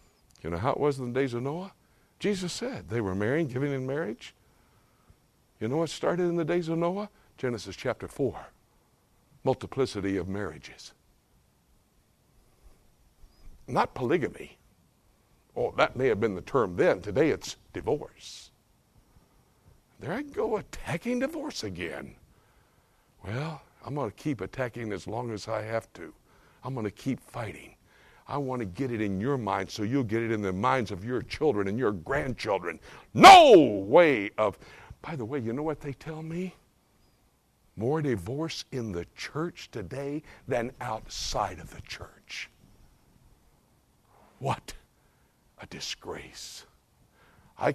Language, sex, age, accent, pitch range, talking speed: English, male, 60-79, American, 110-160 Hz, 145 wpm